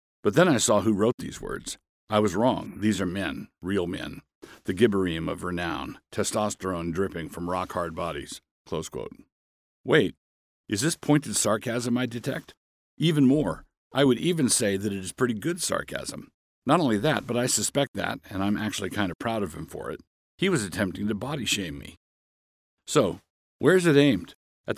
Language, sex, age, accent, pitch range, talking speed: English, male, 50-69, American, 90-120 Hz, 185 wpm